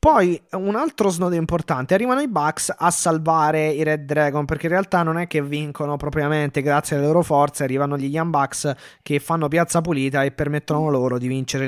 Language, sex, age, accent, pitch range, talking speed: Italian, male, 20-39, native, 135-175 Hz, 195 wpm